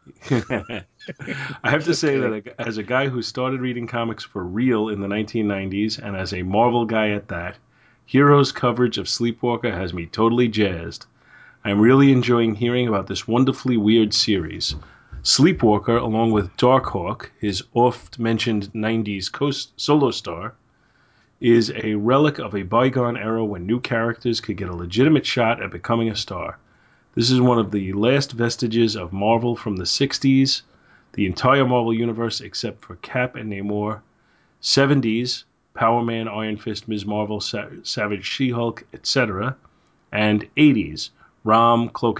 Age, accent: 30-49, American